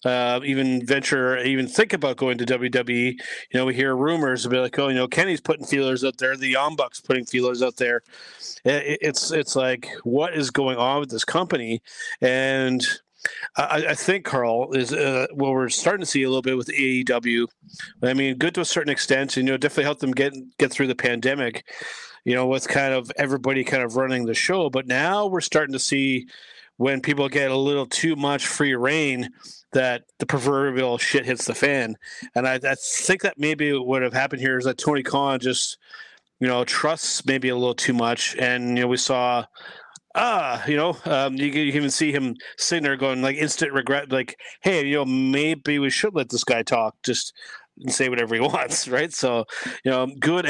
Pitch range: 125-145 Hz